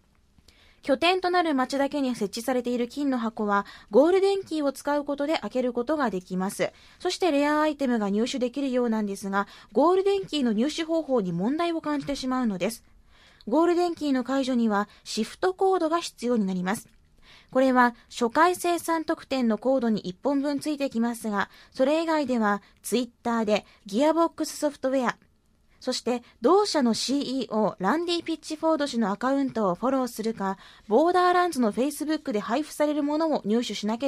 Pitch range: 225-310 Hz